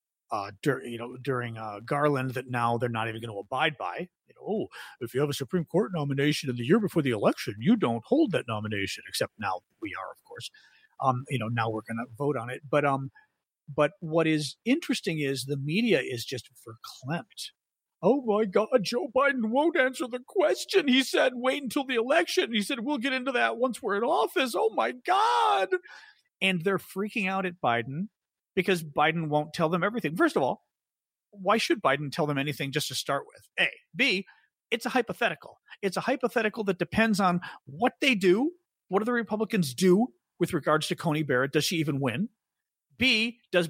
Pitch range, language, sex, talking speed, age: 140-220 Hz, English, male, 205 wpm, 40-59